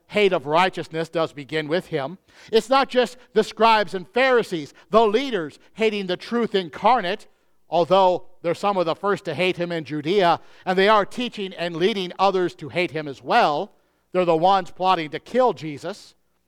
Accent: American